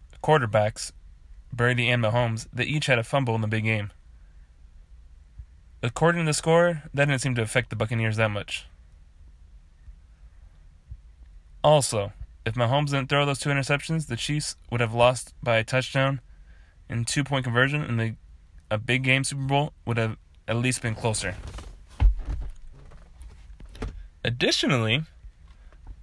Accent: American